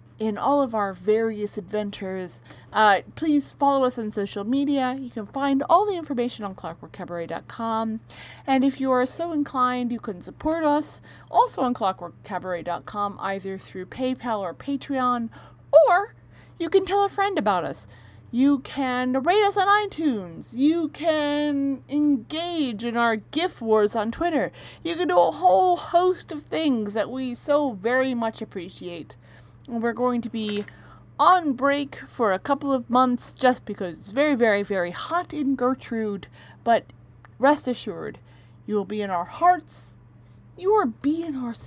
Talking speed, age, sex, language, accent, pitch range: 160 wpm, 30-49, female, English, American, 205-290 Hz